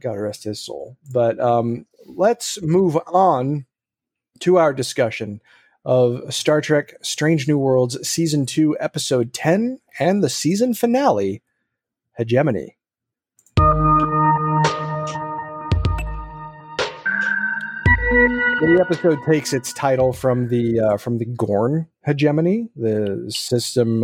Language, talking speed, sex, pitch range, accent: English, 100 wpm, male, 115-155 Hz, American